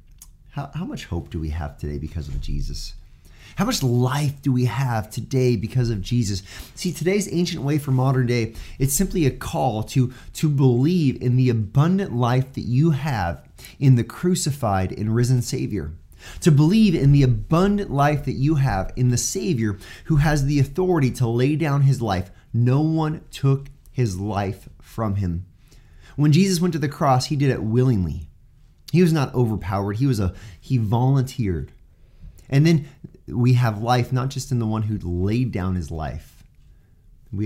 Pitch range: 90-135 Hz